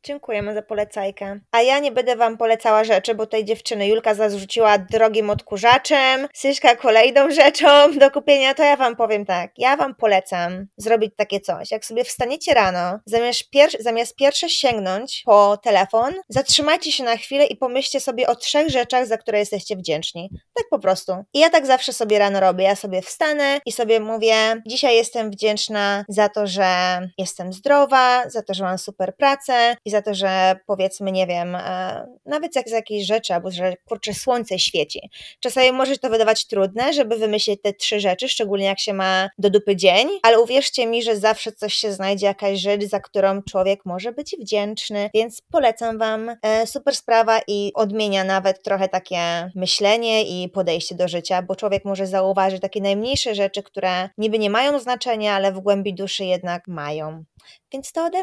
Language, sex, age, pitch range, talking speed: Polish, female, 20-39, 195-250 Hz, 180 wpm